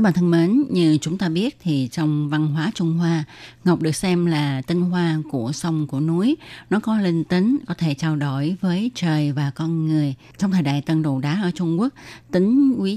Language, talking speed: Vietnamese, 220 wpm